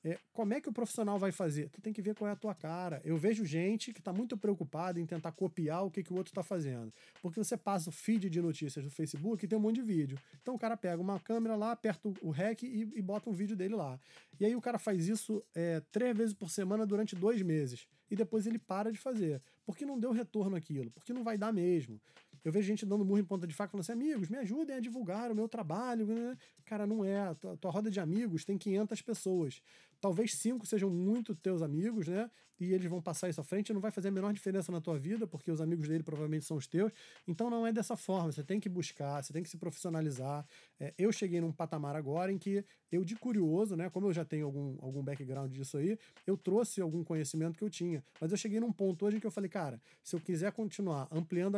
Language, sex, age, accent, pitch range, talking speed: Portuguese, male, 20-39, Brazilian, 165-215 Hz, 250 wpm